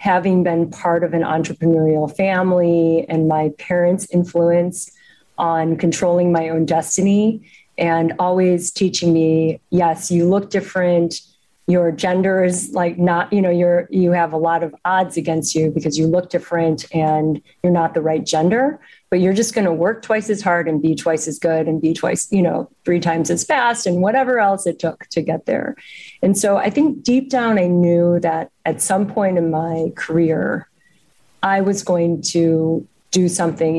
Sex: female